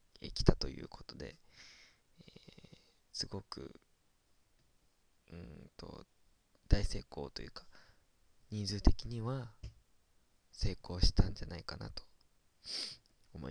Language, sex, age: Japanese, male, 20-39